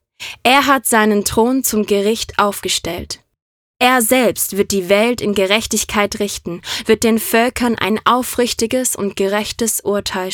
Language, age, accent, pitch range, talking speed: German, 20-39, German, 195-230 Hz, 135 wpm